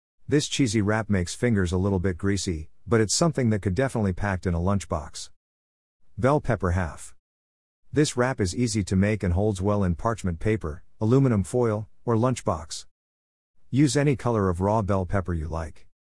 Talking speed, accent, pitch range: 175 wpm, American, 85-115 Hz